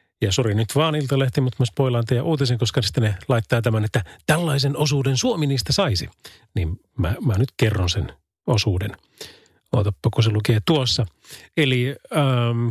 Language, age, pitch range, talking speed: Finnish, 30-49, 115-145 Hz, 150 wpm